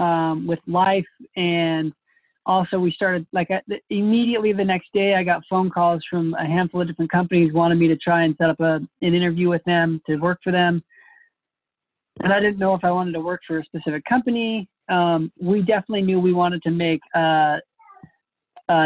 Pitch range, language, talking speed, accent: 160-185 Hz, English, 195 wpm, American